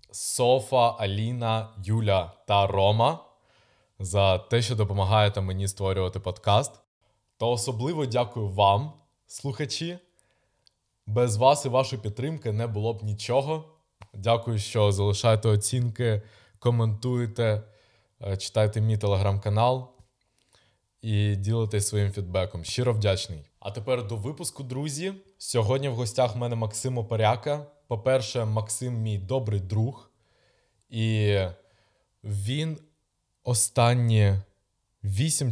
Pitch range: 100-120 Hz